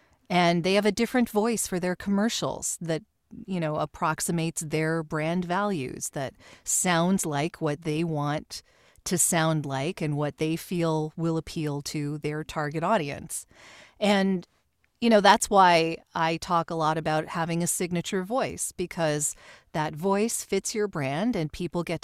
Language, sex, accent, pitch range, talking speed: English, female, American, 160-210 Hz, 160 wpm